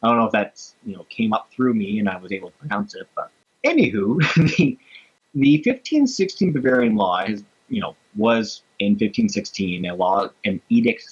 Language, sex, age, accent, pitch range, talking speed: English, male, 30-49, American, 105-175 Hz, 200 wpm